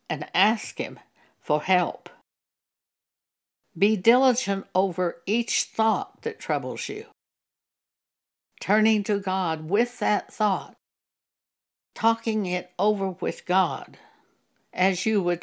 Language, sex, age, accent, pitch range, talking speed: English, female, 60-79, American, 175-220 Hz, 105 wpm